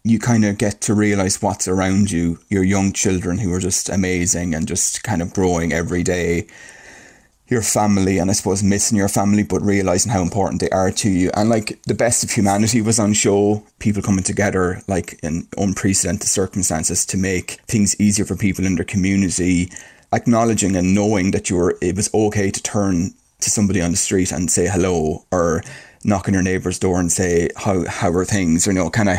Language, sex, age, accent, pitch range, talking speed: English, male, 20-39, Irish, 90-105 Hz, 205 wpm